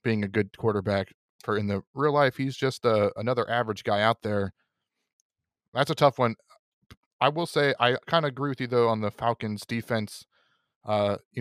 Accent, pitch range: American, 110-130 Hz